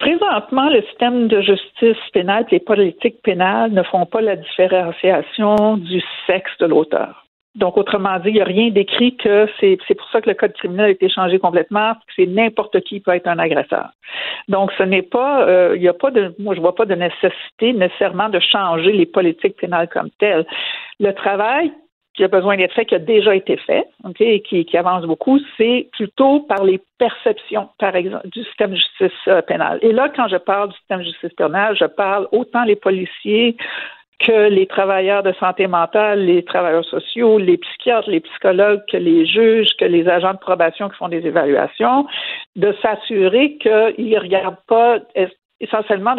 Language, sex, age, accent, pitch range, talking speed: French, female, 60-79, Canadian, 190-235 Hz, 195 wpm